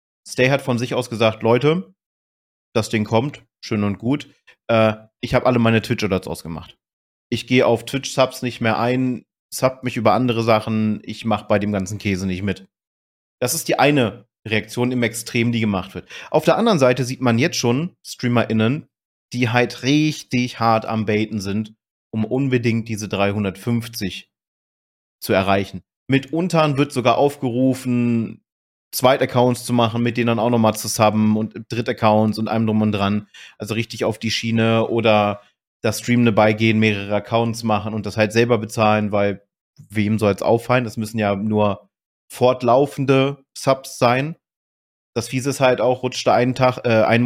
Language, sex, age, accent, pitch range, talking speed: German, male, 30-49, German, 110-130 Hz, 170 wpm